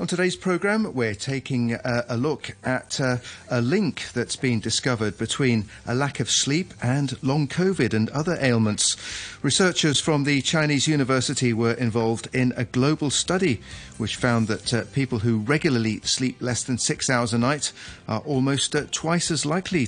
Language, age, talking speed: English, 40-59, 170 wpm